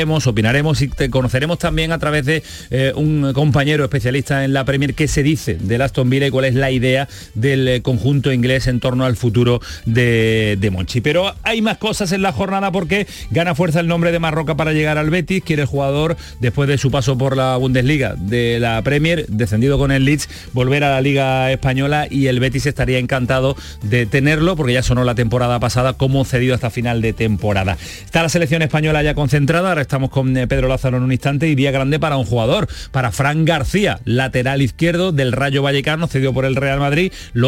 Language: Spanish